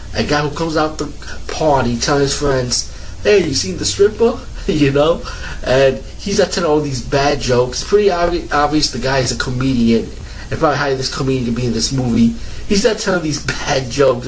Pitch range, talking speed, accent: 120-145 Hz, 205 wpm, American